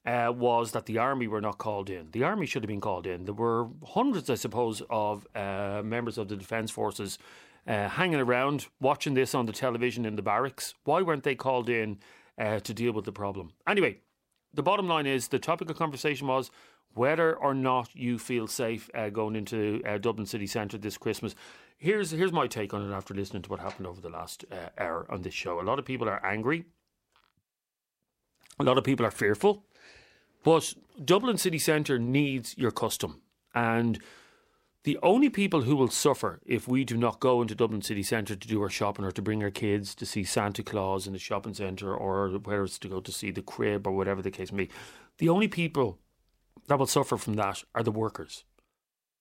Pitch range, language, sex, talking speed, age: 105-135 Hz, English, male, 210 wpm, 30-49